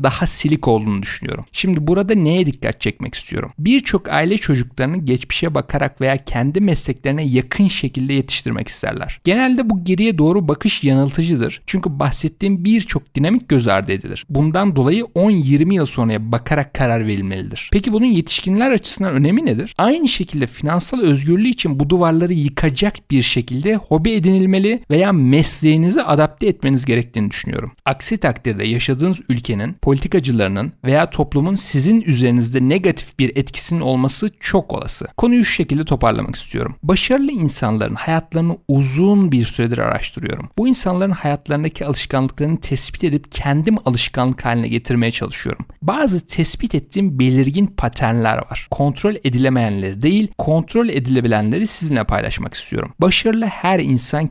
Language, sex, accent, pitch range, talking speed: Turkish, male, native, 130-185 Hz, 135 wpm